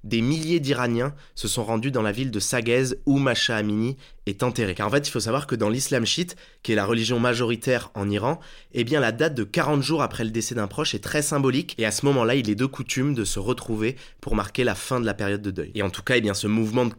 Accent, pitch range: French, 105-135 Hz